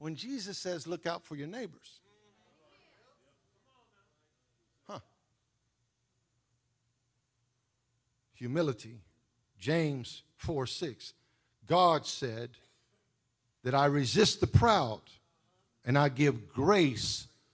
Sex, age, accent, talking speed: male, 50-69, American, 80 wpm